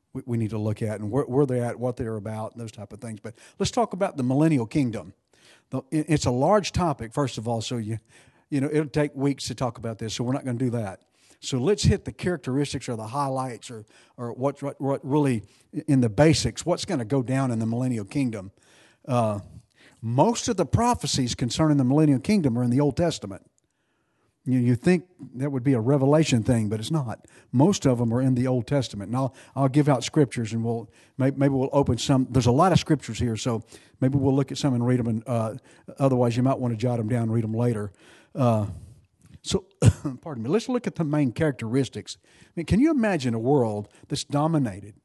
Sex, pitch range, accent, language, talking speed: male, 115-150 Hz, American, English, 225 wpm